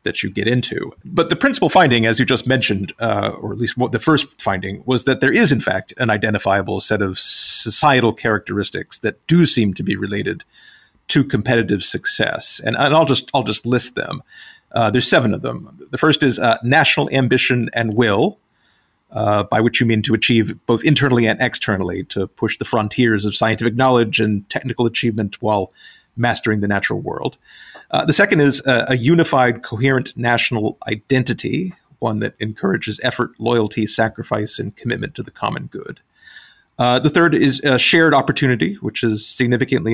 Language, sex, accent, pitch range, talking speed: English, male, American, 110-135 Hz, 180 wpm